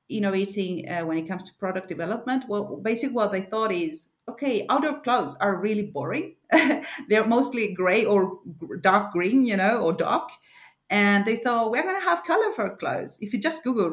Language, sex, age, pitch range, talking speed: English, female, 30-49, 185-230 Hz, 180 wpm